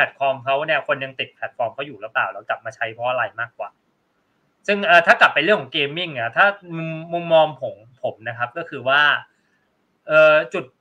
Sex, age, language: male, 20-39, Thai